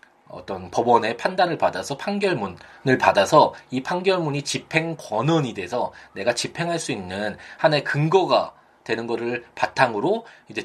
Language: Korean